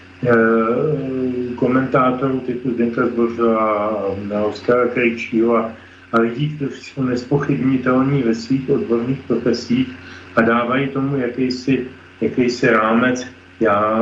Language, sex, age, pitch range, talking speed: Slovak, male, 40-59, 115-130 Hz, 100 wpm